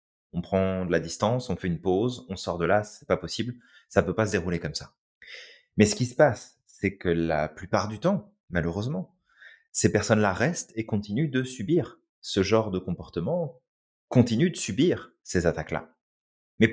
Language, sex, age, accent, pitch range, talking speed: French, male, 30-49, French, 90-125 Hz, 185 wpm